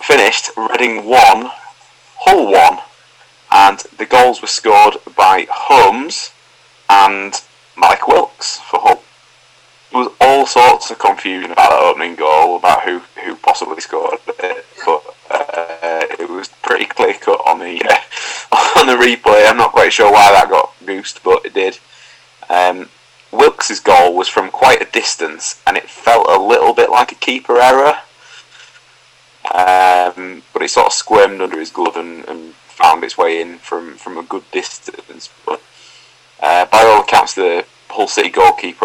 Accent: British